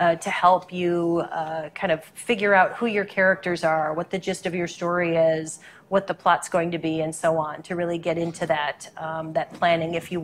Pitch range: 170-195 Hz